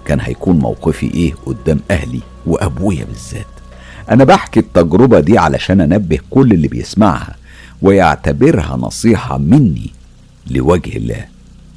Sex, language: male, Arabic